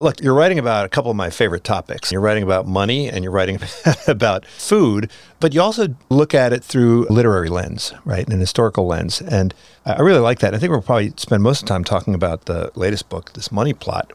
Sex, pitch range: male, 95-140 Hz